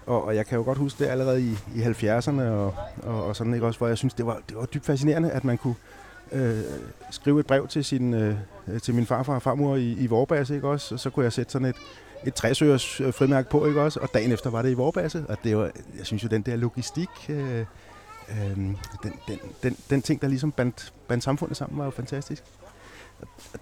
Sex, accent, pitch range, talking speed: male, native, 105-130 Hz, 235 wpm